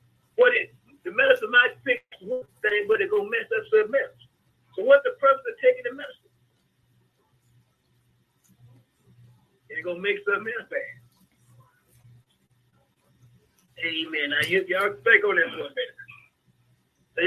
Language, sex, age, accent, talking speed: English, male, 50-69, American, 80 wpm